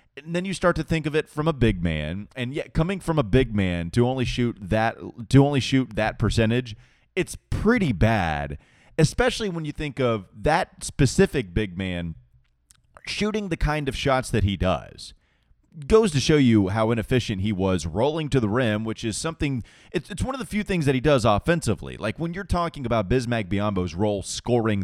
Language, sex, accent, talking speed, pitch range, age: English, male, American, 200 wpm, 95-130 Hz, 30-49